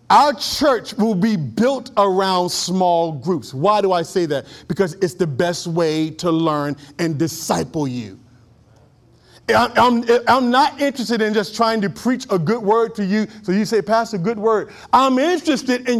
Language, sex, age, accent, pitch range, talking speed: English, male, 40-59, American, 165-240 Hz, 175 wpm